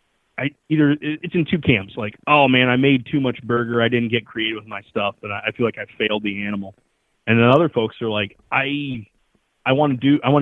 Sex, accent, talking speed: male, American, 235 wpm